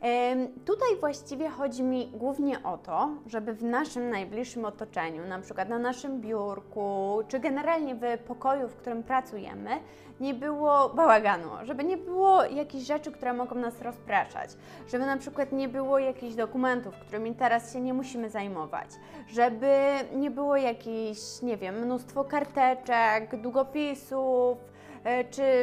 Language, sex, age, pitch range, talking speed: Polish, female, 20-39, 235-280 Hz, 140 wpm